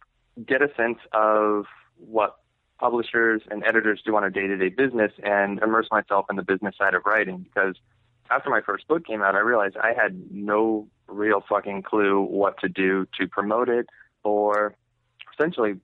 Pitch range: 100-110 Hz